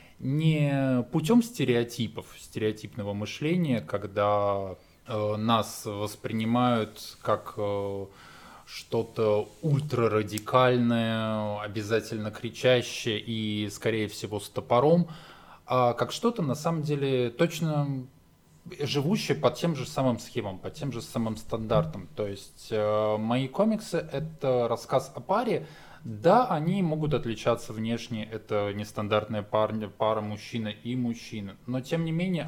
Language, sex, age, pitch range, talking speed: Russian, male, 20-39, 105-130 Hz, 115 wpm